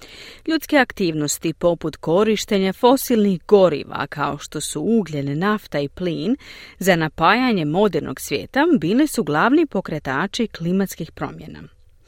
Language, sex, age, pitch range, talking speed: Croatian, female, 40-59, 150-225 Hz, 115 wpm